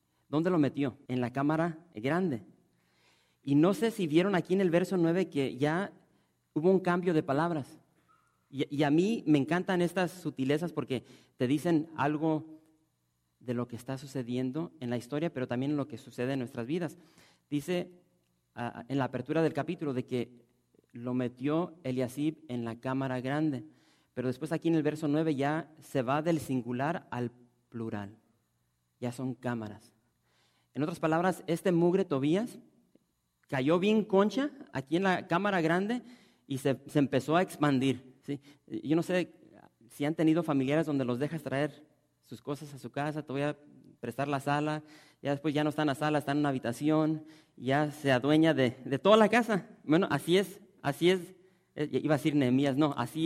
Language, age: English, 40-59